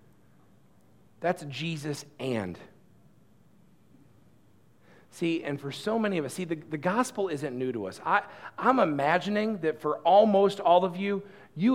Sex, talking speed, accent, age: male, 140 wpm, American, 40-59